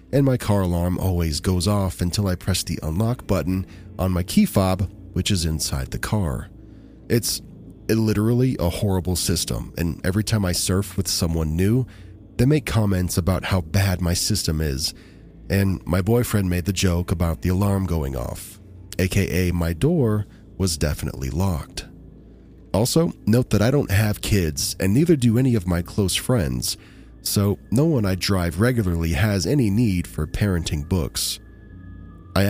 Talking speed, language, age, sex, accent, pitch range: 165 wpm, English, 30-49, male, American, 90-105 Hz